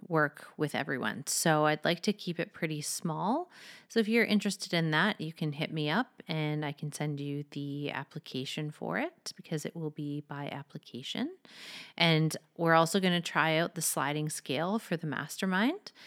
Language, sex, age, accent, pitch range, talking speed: English, female, 30-49, American, 150-180 Hz, 185 wpm